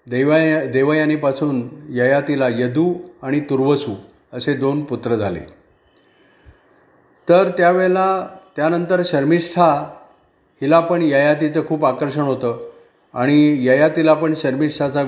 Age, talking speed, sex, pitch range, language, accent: 40-59, 95 wpm, male, 130-160 Hz, Marathi, native